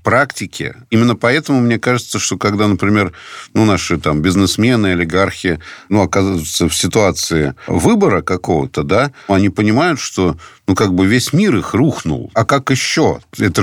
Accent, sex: native, male